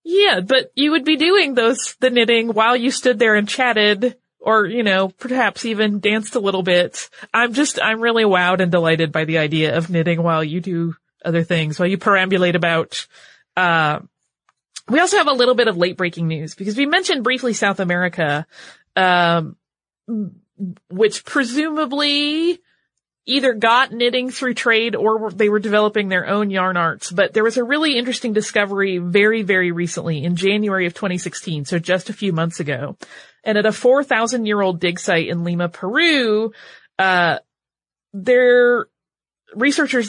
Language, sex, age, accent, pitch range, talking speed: English, female, 30-49, American, 180-240 Hz, 170 wpm